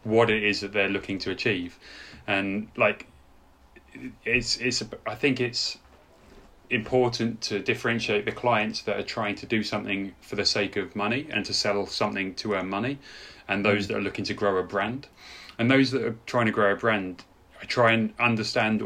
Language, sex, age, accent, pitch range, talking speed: English, male, 30-49, British, 100-120 Hz, 190 wpm